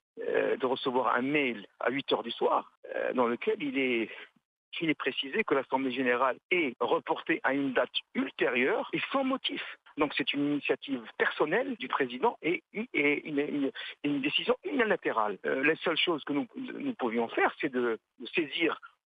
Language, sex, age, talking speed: Arabic, male, 50-69, 175 wpm